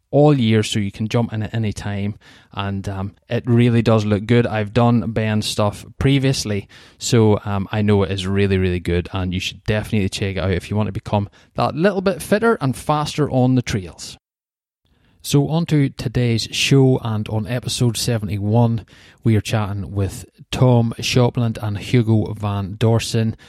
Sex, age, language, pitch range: male, 20-39, English, 100-120 Hz